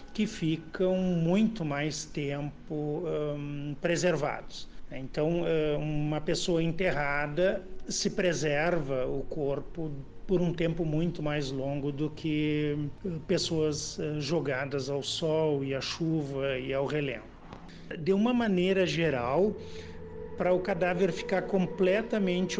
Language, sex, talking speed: Portuguese, male, 110 wpm